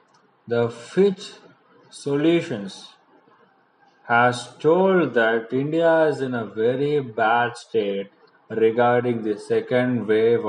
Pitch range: 115-135 Hz